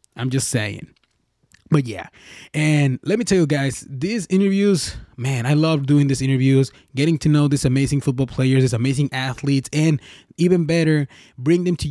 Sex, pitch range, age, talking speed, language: male, 130-155 Hz, 20-39, 175 wpm, English